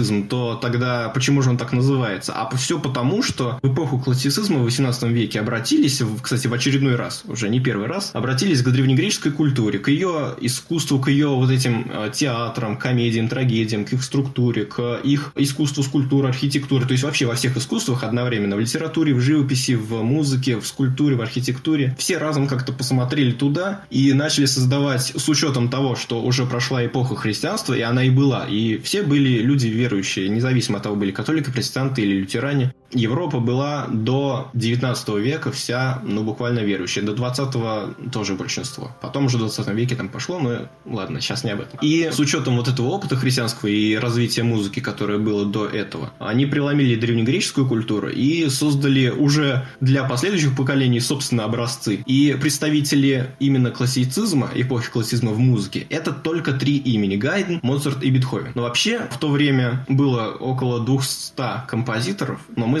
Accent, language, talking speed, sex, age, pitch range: native, Russian, 170 wpm, male, 20-39, 120-140 Hz